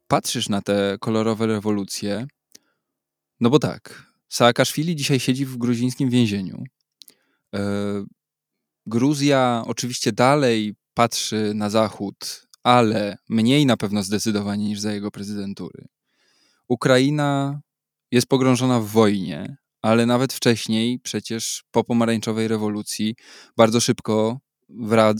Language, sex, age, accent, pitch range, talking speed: Polish, male, 20-39, native, 110-130 Hz, 105 wpm